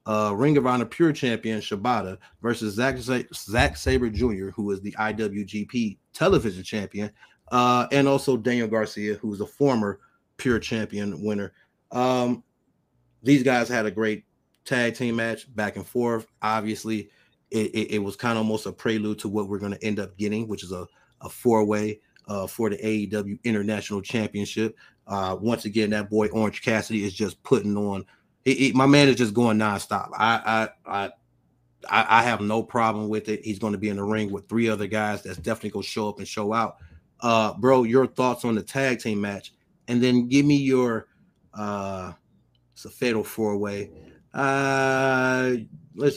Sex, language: male, English